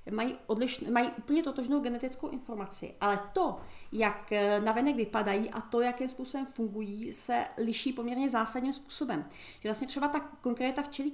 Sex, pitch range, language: female, 215-275 Hz, Czech